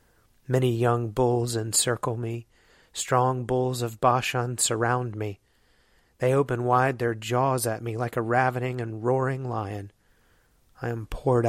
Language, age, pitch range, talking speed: English, 40-59, 110-130 Hz, 140 wpm